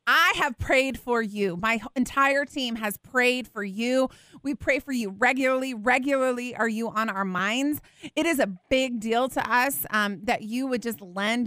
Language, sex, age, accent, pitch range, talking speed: English, female, 30-49, American, 210-285 Hz, 190 wpm